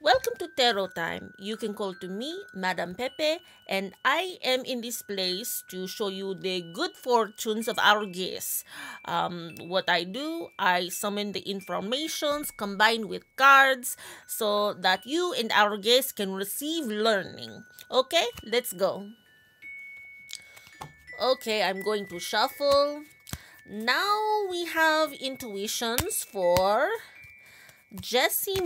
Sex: female